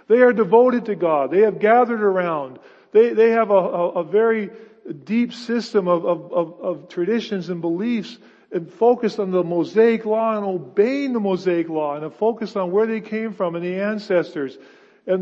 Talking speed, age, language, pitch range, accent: 185 wpm, 50-69, English, 165-220 Hz, American